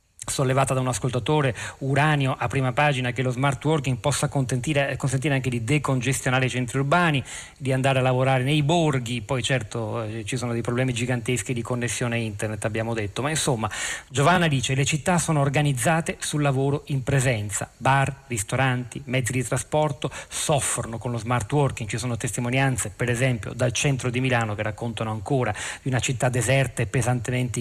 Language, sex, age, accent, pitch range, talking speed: Italian, male, 40-59, native, 120-145 Hz, 175 wpm